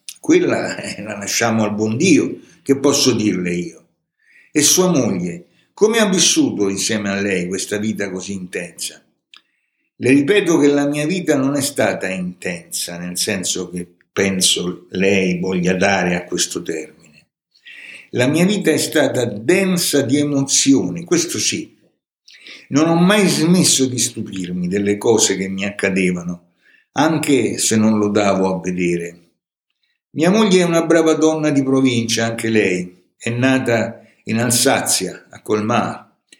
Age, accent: 60-79, native